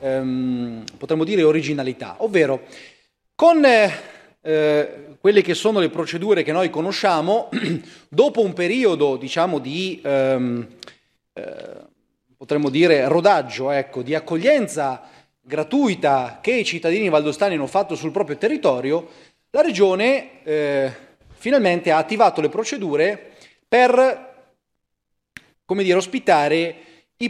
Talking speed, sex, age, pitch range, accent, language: 115 wpm, male, 30-49, 145-215 Hz, native, Italian